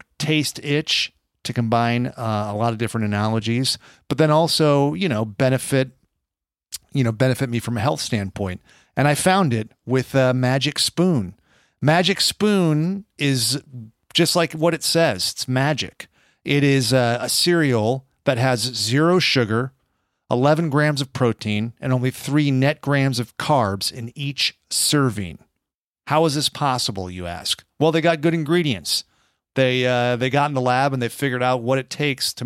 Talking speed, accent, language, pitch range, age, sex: 170 wpm, American, English, 115-145 Hz, 40-59, male